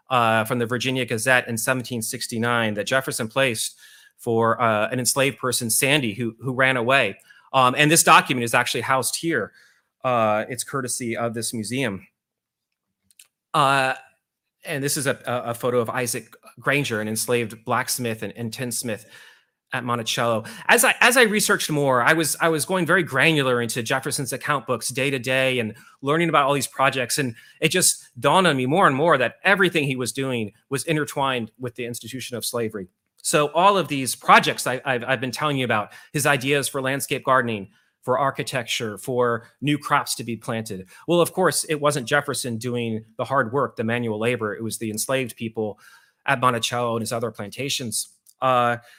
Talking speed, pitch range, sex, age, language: 185 wpm, 115-140 Hz, male, 30-49, English